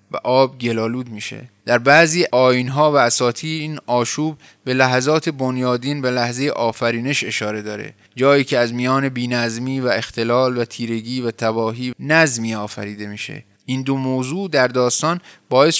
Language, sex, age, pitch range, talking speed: Persian, male, 20-39, 120-160 Hz, 150 wpm